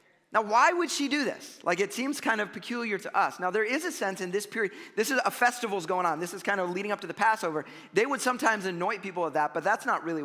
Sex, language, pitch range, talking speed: male, English, 155-225 Hz, 280 wpm